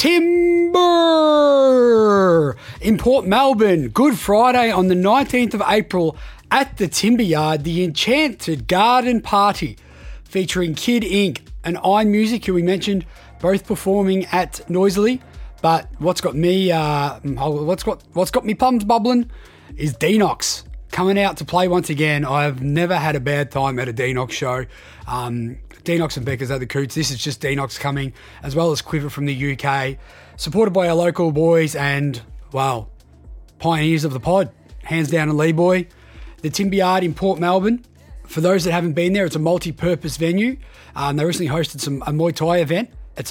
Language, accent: English, Australian